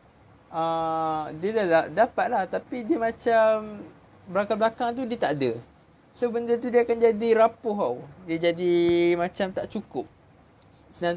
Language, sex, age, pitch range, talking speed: Malay, male, 20-39, 140-200 Hz, 145 wpm